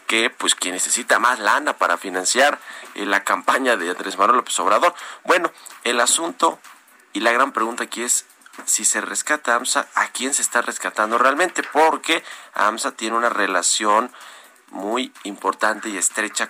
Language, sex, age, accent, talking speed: Spanish, male, 40-59, Mexican, 160 wpm